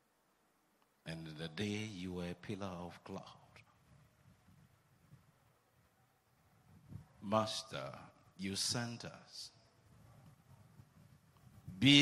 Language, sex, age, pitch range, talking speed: English, male, 50-69, 110-140 Hz, 70 wpm